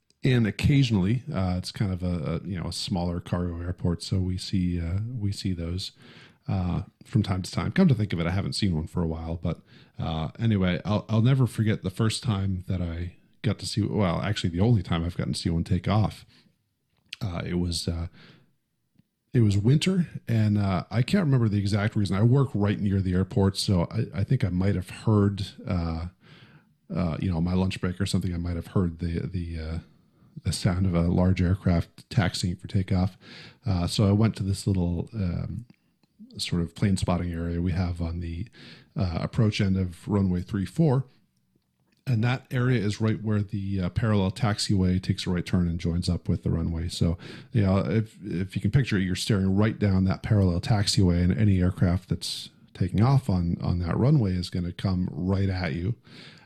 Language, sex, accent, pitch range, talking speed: English, male, American, 90-110 Hz, 205 wpm